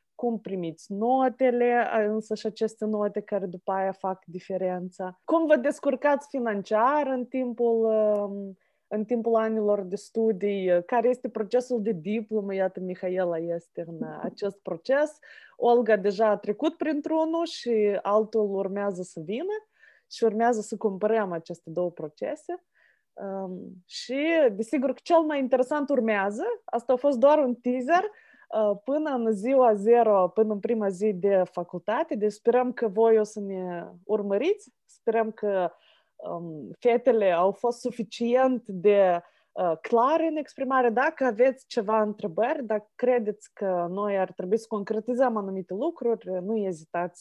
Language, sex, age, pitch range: Romanian, female, 20-39, 195-255 Hz